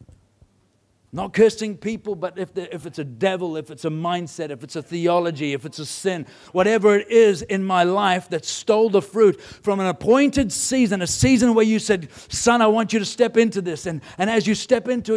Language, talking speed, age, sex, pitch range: English, 220 wpm, 50-69, male, 175-230 Hz